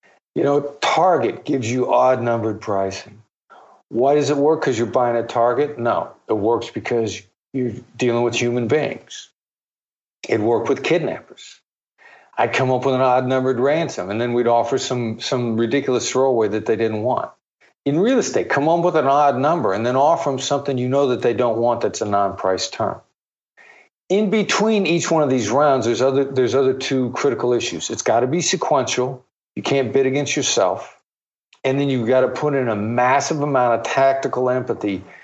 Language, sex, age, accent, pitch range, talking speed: English, male, 50-69, American, 120-140 Hz, 185 wpm